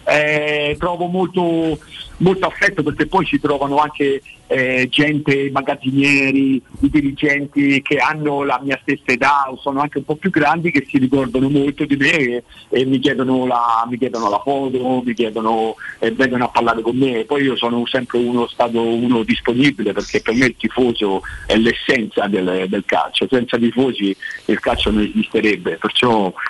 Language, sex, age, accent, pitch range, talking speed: Italian, male, 50-69, native, 120-150 Hz, 170 wpm